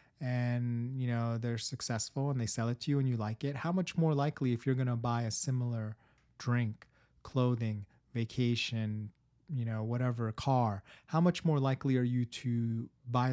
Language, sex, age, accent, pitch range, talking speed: English, male, 30-49, American, 120-145 Hz, 190 wpm